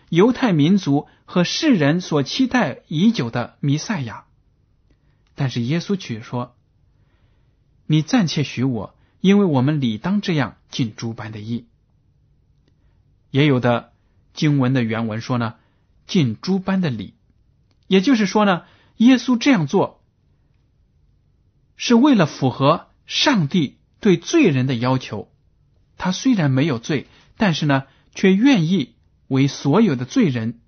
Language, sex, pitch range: Chinese, male, 120-175 Hz